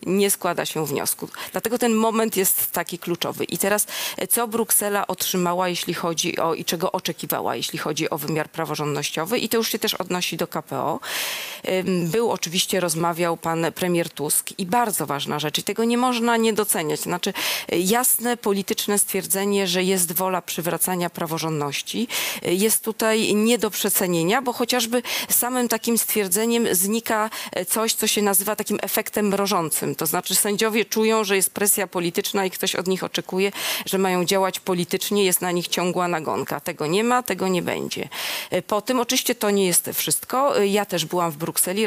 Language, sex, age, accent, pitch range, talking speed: Polish, female, 40-59, native, 170-215 Hz, 165 wpm